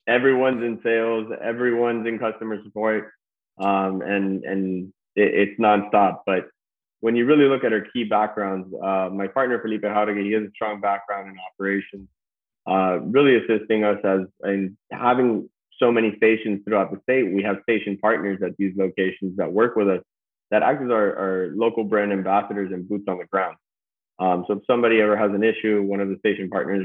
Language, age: English, 20-39